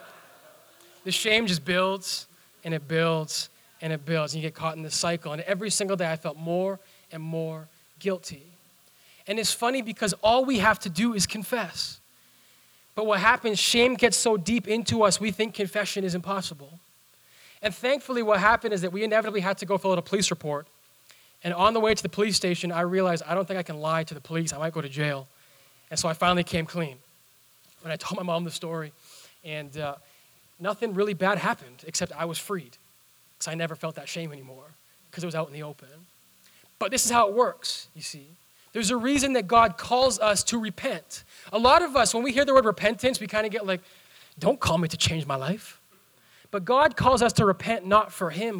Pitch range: 165-220 Hz